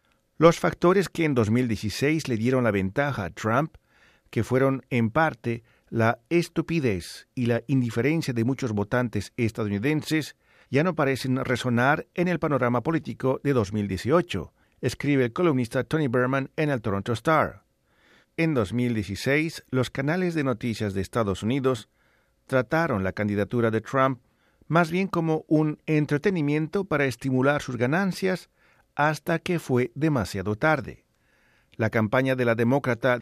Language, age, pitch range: Spanish, 50-69, 115-155 Hz